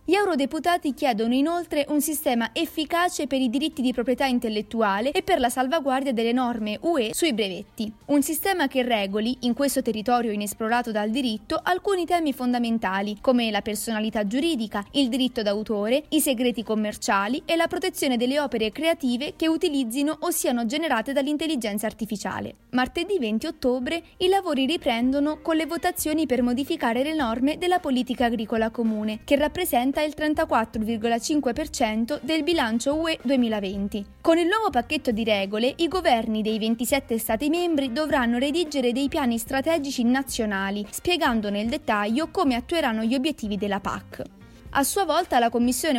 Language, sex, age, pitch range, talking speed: Italian, female, 20-39, 230-310 Hz, 150 wpm